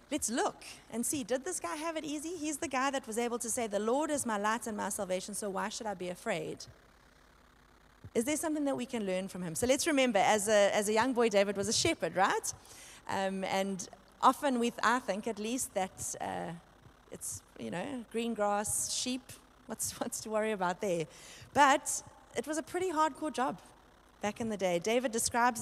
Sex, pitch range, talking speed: female, 210-275 Hz, 210 wpm